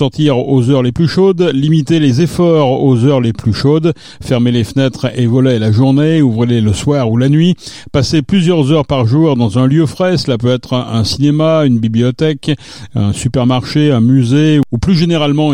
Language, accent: French, French